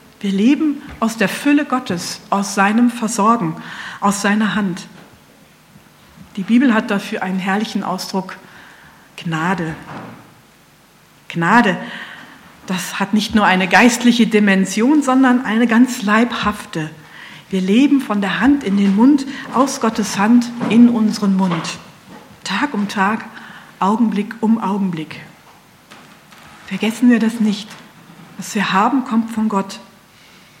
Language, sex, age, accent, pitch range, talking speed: German, female, 50-69, German, 195-235 Hz, 120 wpm